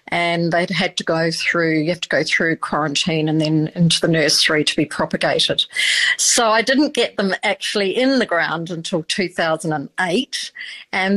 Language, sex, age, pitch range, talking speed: English, female, 50-69, 175-220 Hz, 170 wpm